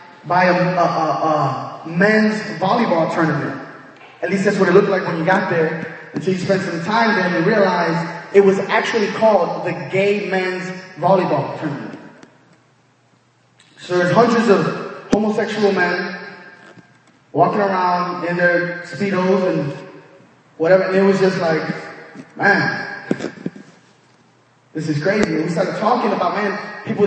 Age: 20-39